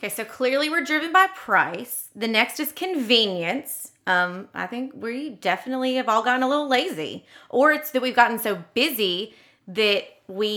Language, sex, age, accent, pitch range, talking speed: English, female, 30-49, American, 195-265 Hz, 175 wpm